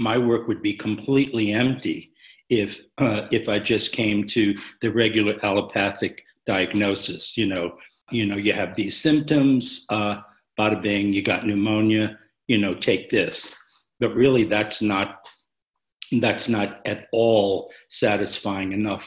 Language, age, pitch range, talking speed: English, 60-79, 105-130 Hz, 140 wpm